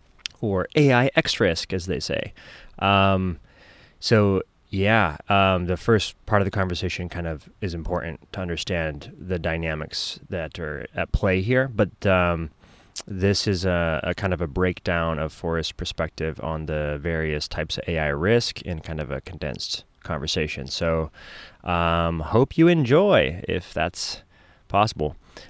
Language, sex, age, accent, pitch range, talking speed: English, male, 20-39, American, 80-95 Hz, 150 wpm